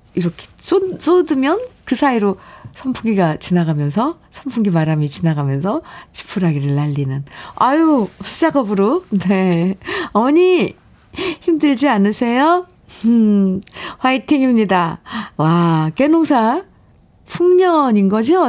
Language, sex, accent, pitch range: Korean, female, native, 180-270 Hz